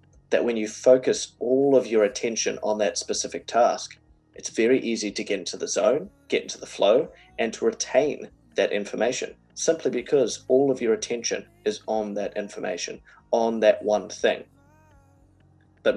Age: 30-49